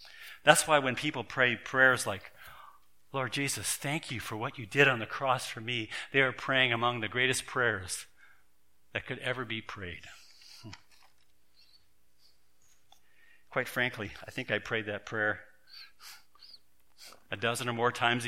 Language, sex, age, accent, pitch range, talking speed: English, male, 50-69, American, 95-130 Hz, 150 wpm